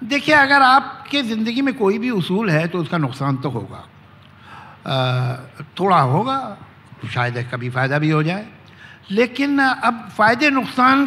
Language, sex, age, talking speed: Hindi, male, 60-79, 140 wpm